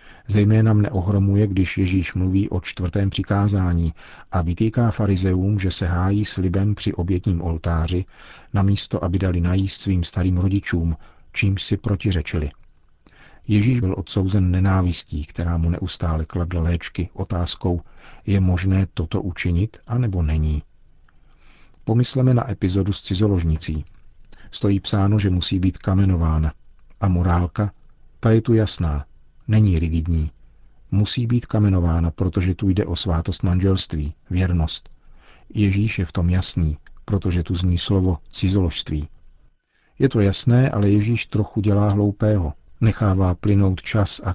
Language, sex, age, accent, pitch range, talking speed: Czech, male, 50-69, native, 85-105 Hz, 130 wpm